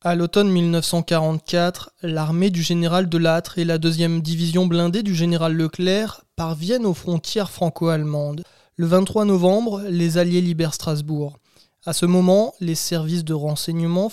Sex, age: male, 20-39